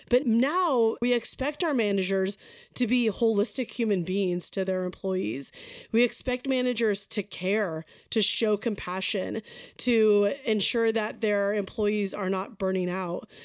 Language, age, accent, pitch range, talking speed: English, 30-49, American, 195-235 Hz, 140 wpm